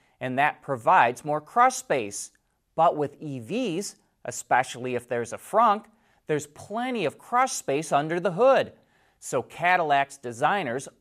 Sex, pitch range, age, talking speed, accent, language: male, 125-175 Hz, 30-49, 135 wpm, American, English